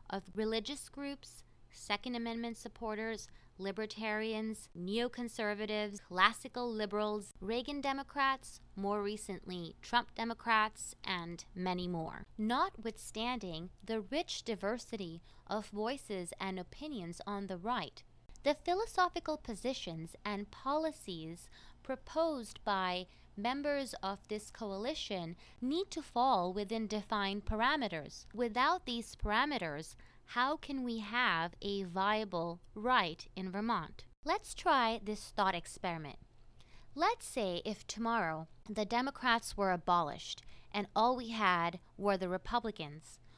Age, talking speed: 20-39, 110 wpm